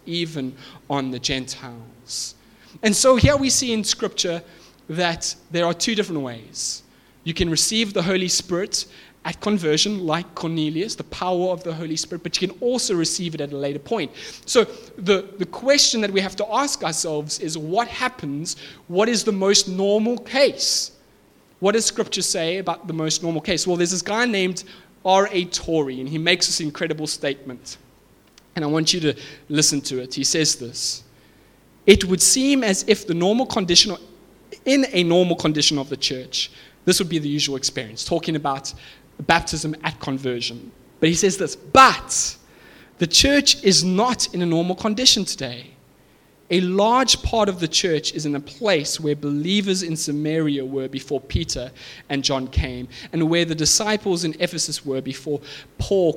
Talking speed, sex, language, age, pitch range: 175 wpm, male, English, 20-39, 140-195 Hz